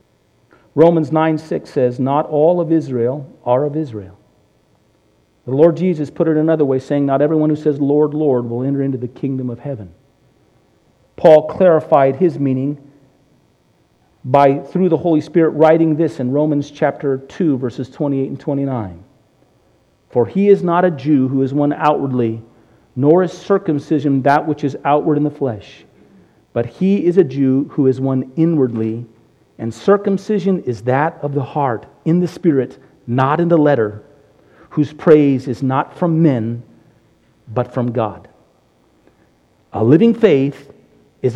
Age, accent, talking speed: 50-69, American, 155 wpm